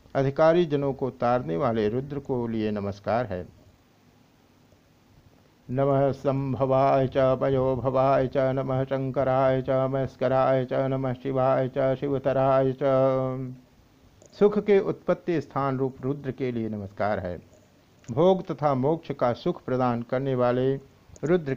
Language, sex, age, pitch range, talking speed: Hindi, male, 60-79, 125-140 Hz, 115 wpm